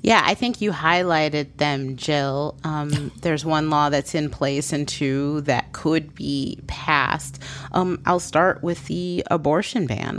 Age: 30-49